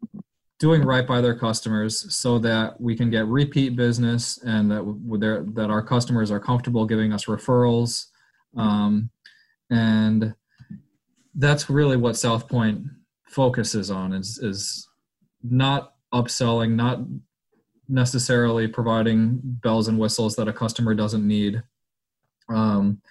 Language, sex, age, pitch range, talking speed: English, male, 20-39, 110-125 Hz, 120 wpm